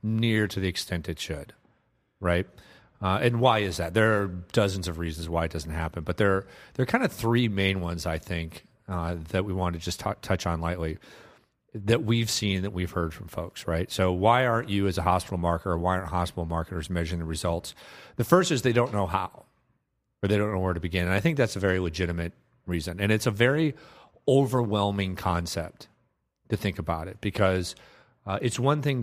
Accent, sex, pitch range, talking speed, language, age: American, male, 85-110 Hz, 210 wpm, English, 40-59